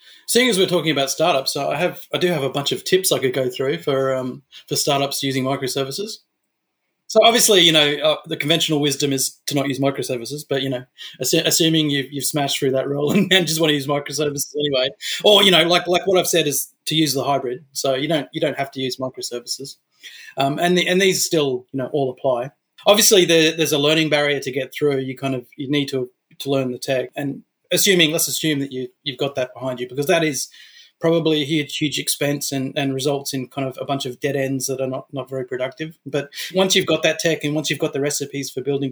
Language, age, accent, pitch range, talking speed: English, 30-49, Australian, 135-165 Hz, 245 wpm